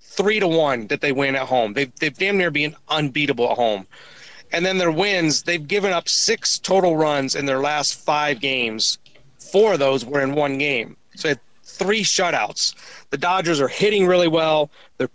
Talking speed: 190 wpm